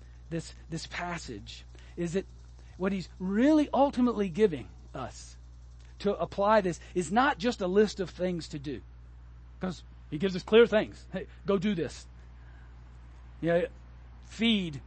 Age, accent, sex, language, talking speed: 50-69, American, male, English, 150 wpm